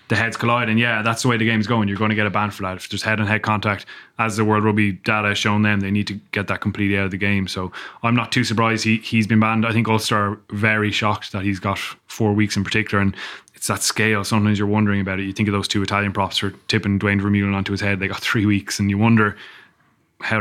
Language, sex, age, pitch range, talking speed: English, male, 20-39, 100-115 Hz, 280 wpm